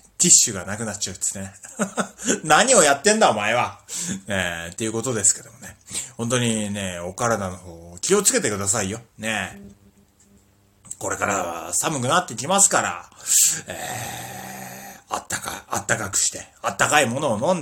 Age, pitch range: 30-49, 100-160 Hz